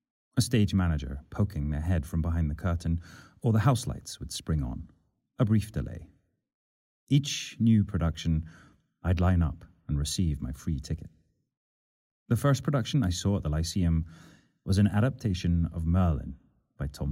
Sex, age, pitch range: male, 30-49, 75-105 Hz